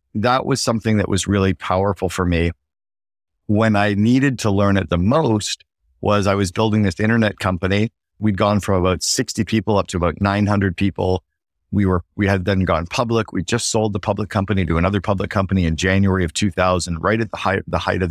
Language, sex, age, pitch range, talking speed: English, male, 50-69, 85-100 Hz, 210 wpm